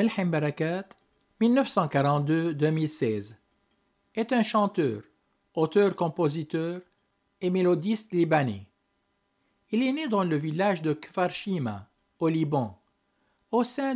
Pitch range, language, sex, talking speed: 145-205 Hz, French, male, 95 wpm